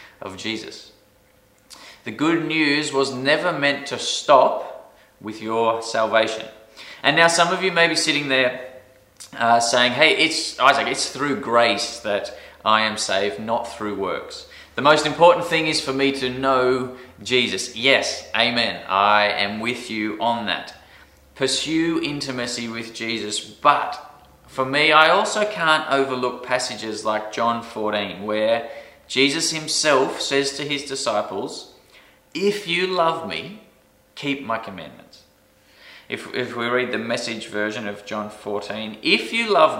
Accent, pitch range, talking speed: Australian, 110-145 Hz, 145 wpm